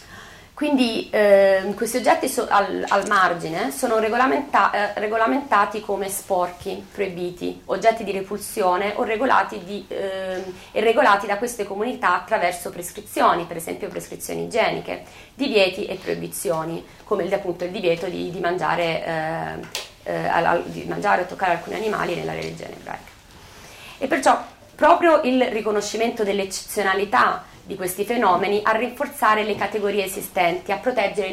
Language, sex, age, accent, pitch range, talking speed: Italian, female, 30-49, native, 170-220 Hz, 135 wpm